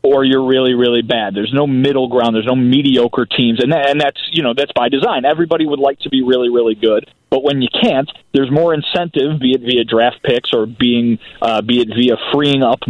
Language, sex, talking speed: English, male, 225 wpm